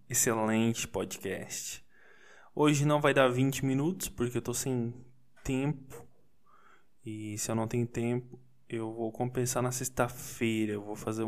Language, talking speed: Portuguese, 145 wpm